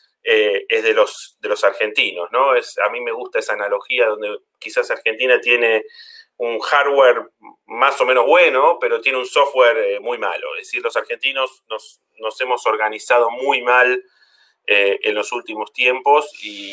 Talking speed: 170 wpm